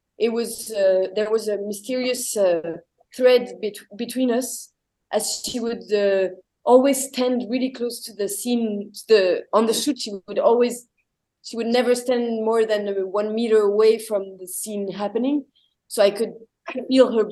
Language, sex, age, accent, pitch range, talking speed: English, female, 20-39, French, 200-235 Hz, 170 wpm